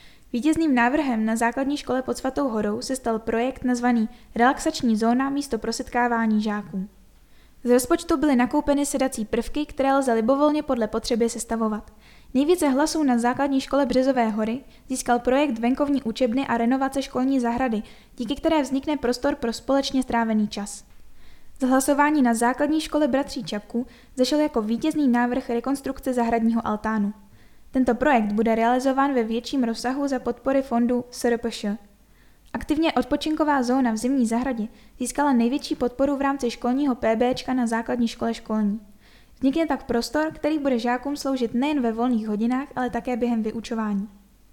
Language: Czech